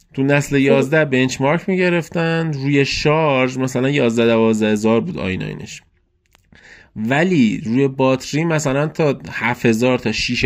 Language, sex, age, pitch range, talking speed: Persian, male, 20-39, 110-135 Hz, 130 wpm